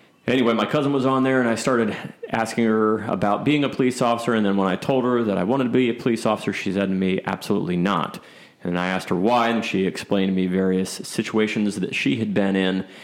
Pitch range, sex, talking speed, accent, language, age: 95-110 Hz, male, 250 wpm, American, English, 30-49